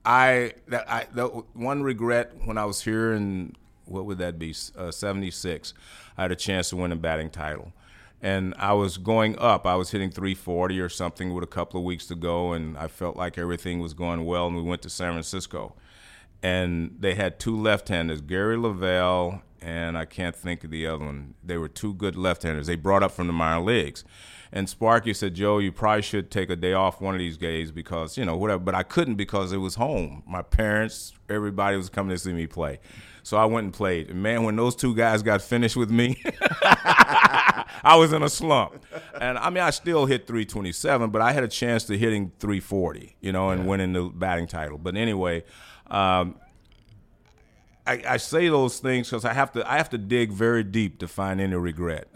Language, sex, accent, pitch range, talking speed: English, male, American, 85-110 Hz, 210 wpm